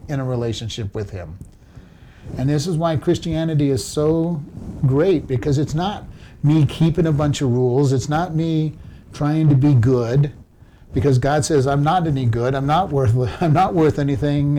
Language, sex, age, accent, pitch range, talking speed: English, male, 50-69, American, 130-160 Hz, 175 wpm